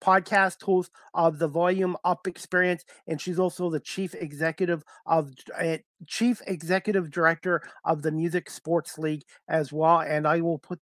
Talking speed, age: 155 wpm, 40-59